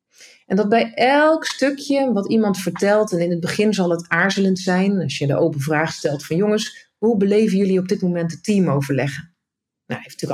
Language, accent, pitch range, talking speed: Dutch, Dutch, 170-230 Hz, 210 wpm